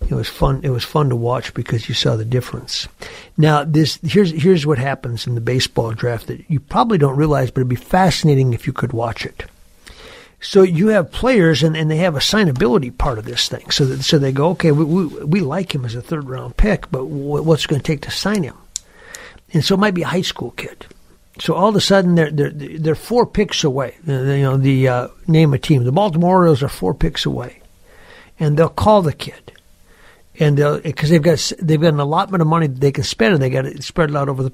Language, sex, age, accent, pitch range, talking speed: English, male, 60-79, American, 135-170 Hz, 240 wpm